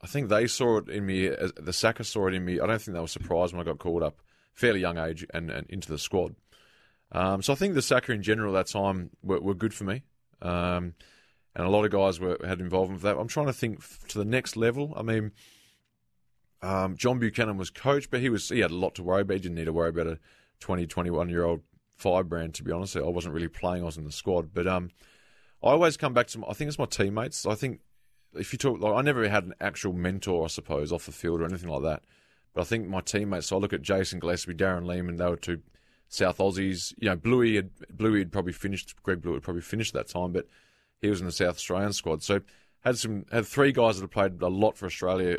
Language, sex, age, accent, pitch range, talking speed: English, male, 20-39, Australian, 85-110 Hz, 265 wpm